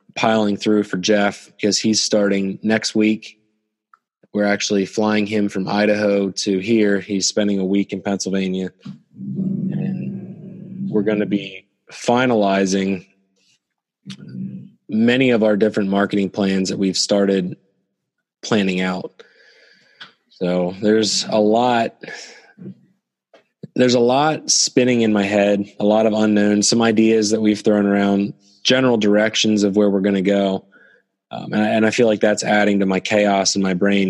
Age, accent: 20-39, American